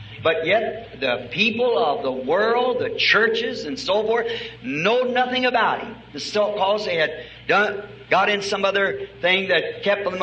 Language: English